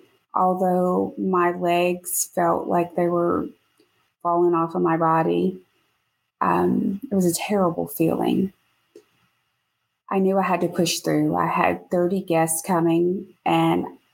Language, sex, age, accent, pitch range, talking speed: English, female, 30-49, American, 165-190 Hz, 130 wpm